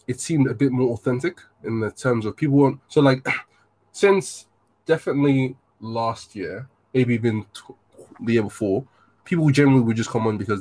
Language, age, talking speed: English, 20-39, 170 wpm